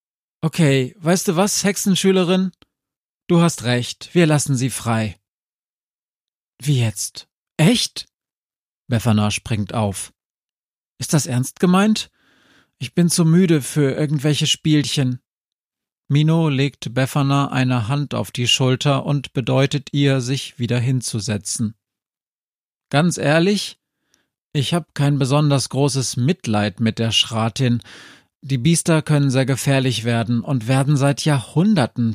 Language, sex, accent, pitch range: German, male, German, 120-160 Hz